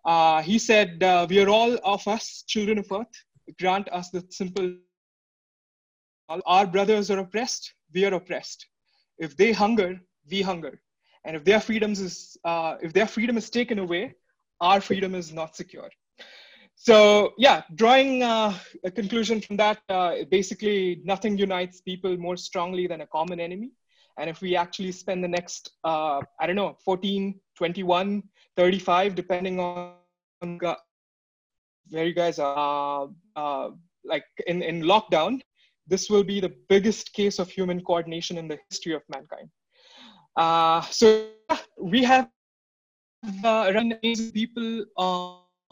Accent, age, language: Indian, 20-39, English